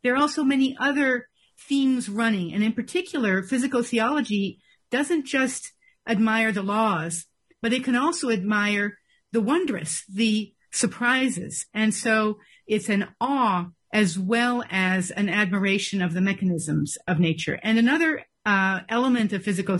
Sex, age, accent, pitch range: female, 50-69, American, 195-250 Hz